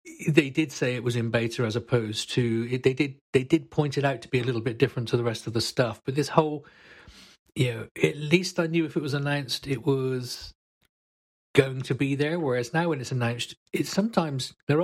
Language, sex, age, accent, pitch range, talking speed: English, male, 40-59, British, 120-155 Hz, 225 wpm